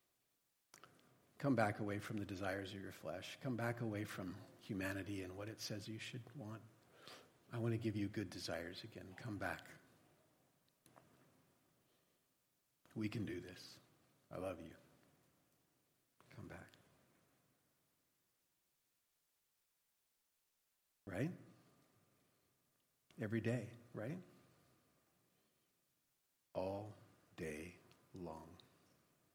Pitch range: 100-125 Hz